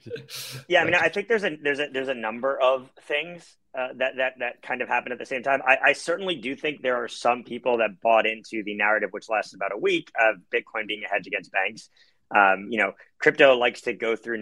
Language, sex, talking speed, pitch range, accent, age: English, male, 245 wpm, 110-135 Hz, American, 30-49